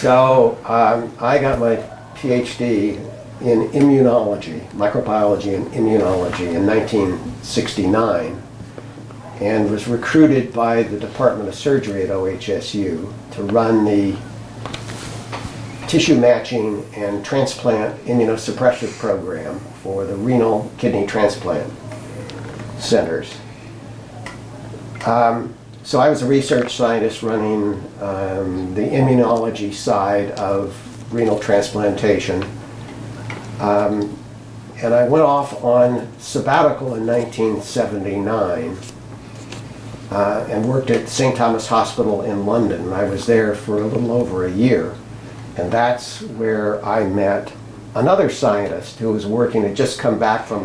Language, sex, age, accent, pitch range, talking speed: English, male, 60-79, American, 105-120 Hz, 115 wpm